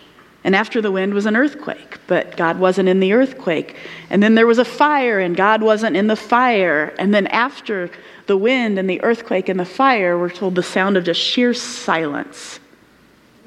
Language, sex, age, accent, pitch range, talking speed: English, female, 40-59, American, 185-240 Hz, 195 wpm